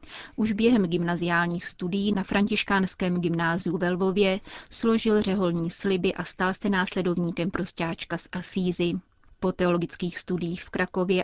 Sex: female